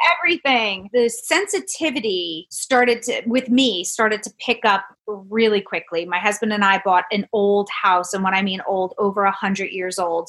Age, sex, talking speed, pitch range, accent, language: 30-49, female, 180 wpm, 205-250 Hz, American, English